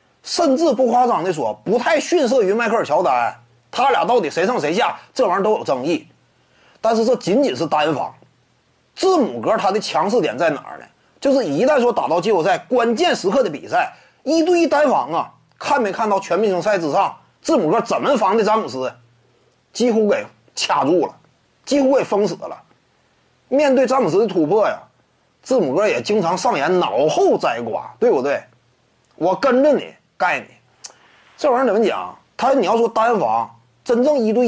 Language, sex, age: Chinese, male, 30-49